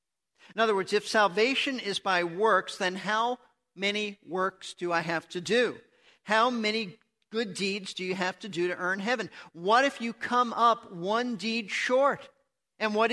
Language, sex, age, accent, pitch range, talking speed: English, male, 50-69, American, 180-235 Hz, 180 wpm